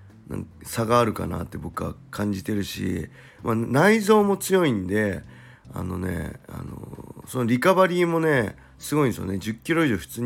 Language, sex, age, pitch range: Japanese, male, 40-59, 95-125 Hz